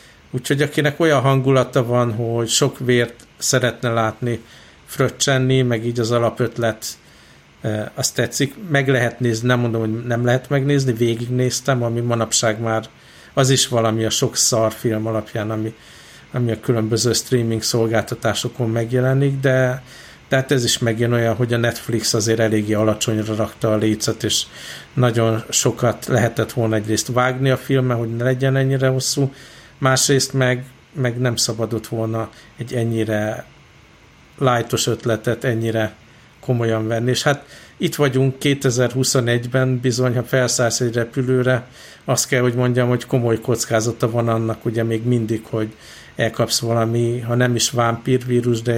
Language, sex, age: Hungarian, male, 60-79